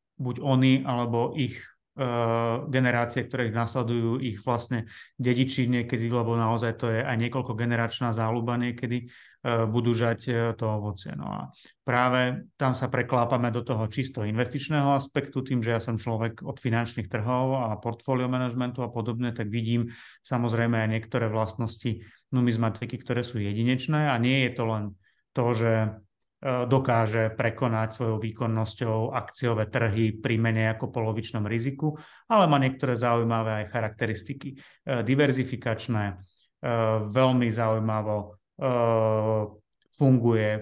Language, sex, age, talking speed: Slovak, male, 30-49, 130 wpm